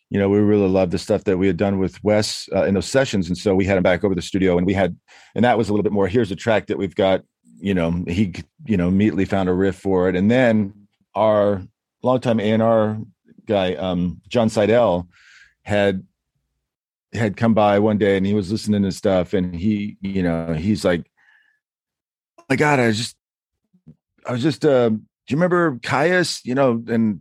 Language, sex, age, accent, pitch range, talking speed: English, male, 40-59, American, 95-115 Hz, 215 wpm